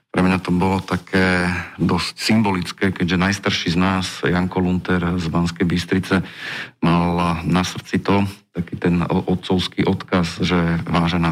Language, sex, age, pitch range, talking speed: Slovak, male, 50-69, 85-90 Hz, 140 wpm